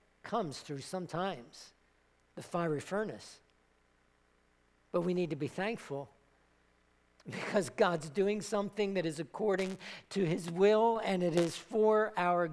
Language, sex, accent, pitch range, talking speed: English, male, American, 165-240 Hz, 130 wpm